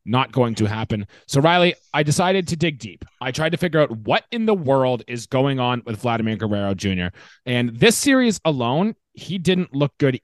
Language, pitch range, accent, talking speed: English, 120-175 Hz, American, 205 wpm